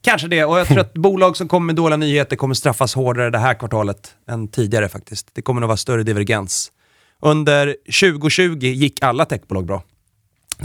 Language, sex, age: Swedish, male, 30-49